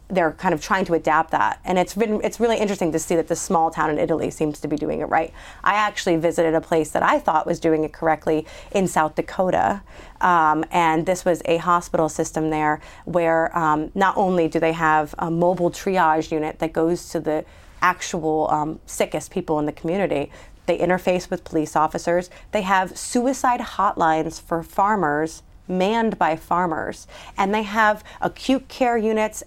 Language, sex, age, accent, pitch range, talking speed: English, female, 30-49, American, 160-205 Hz, 185 wpm